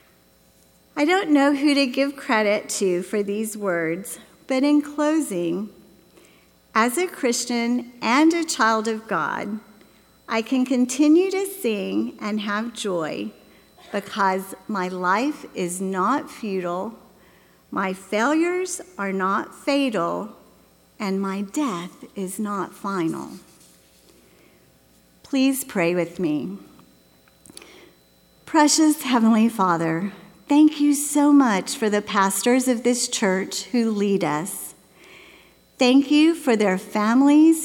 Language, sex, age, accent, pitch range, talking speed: English, female, 50-69, American, 190-270 Hz, 115 wpm